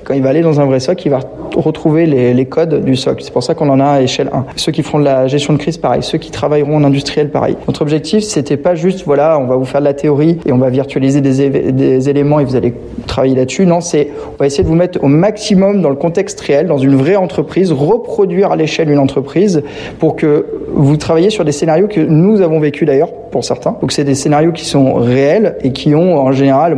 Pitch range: 140-170 Hz